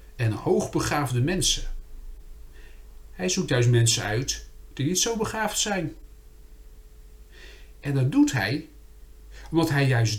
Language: Dutch